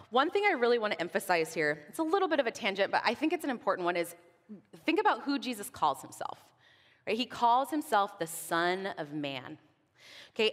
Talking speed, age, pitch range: 215 wpm, 20-39, 195-270 Hz